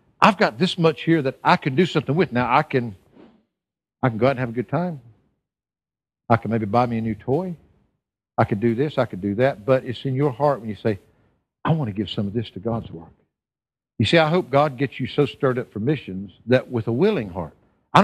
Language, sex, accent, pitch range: English, male, American, 125-190 Hz